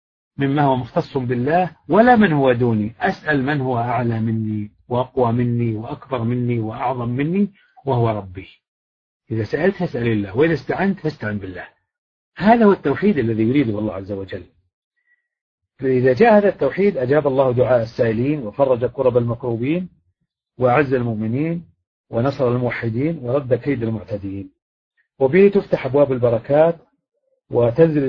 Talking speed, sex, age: 130 wpm, male, 40-59